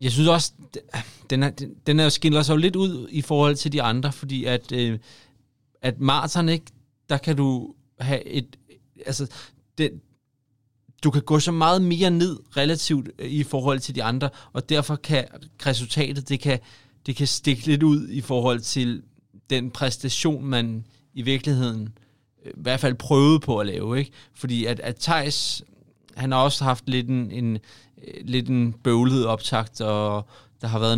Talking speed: 165 wpm